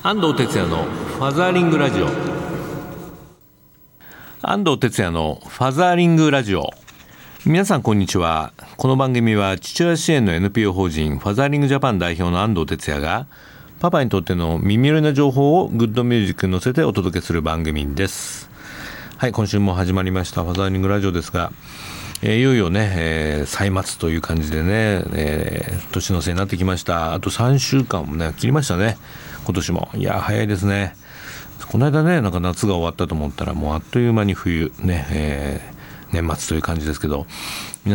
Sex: male